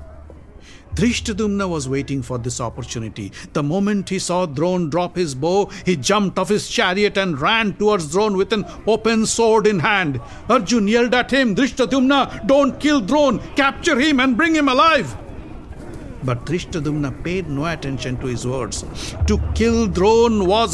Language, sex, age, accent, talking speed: English, male, 60-79, Indian, 160 wpm